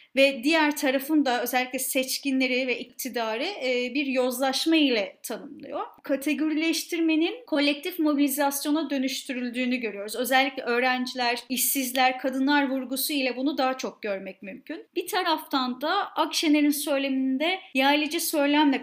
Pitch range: 250-295 Hz